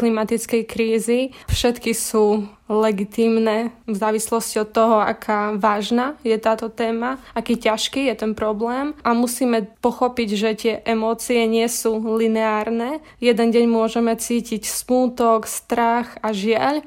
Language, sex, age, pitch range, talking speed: Slovak, female, 20-39, 220-235 Hz, 130 wpm